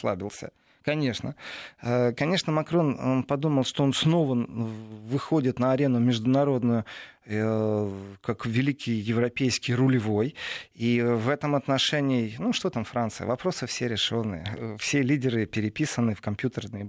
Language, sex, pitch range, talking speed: Russian, male, 115-150 Hz, 110 wpm